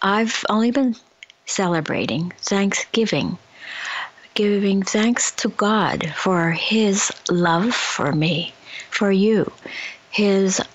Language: English